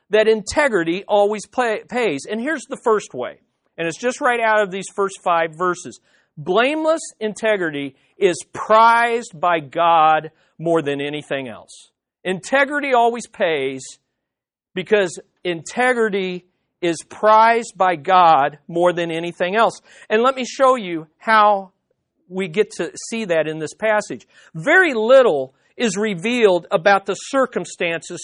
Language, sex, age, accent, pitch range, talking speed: English, male, 40-59, American, 180-245 Hz, 135 wpm